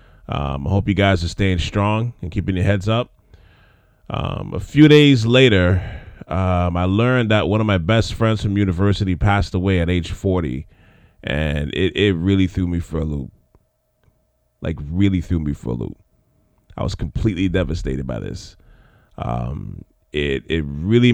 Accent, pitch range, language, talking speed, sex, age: American, 90-110 Hz, English, 170 wpm, male, 20-39